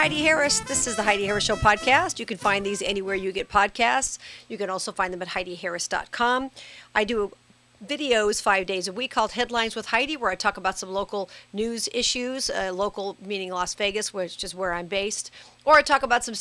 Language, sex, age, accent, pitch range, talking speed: English, female, 50-69, American, 190-230 Hz, 210 wpm